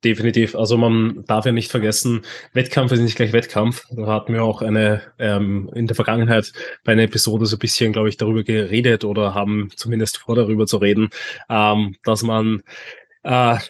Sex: male